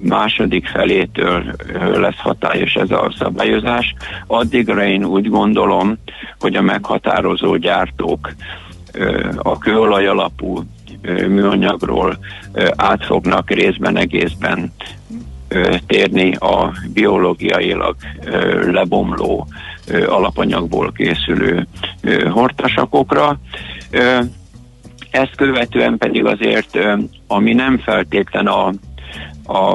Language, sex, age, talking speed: Hungarian, male, 60-79, 75 wpm